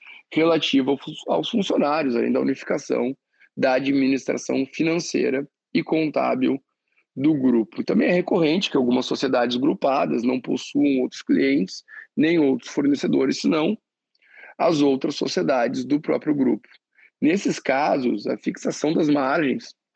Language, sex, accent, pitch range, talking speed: Portuguese, male, Brazilian, 140-225 Hz, 120 wpm